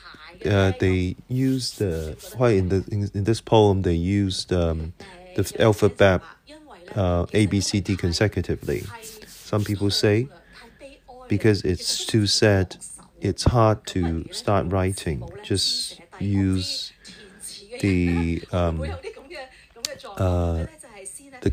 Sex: male